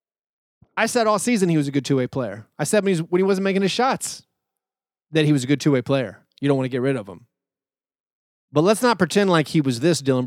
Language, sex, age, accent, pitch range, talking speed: English, male, 30-49, American, 140-195 Hz, 250 wpm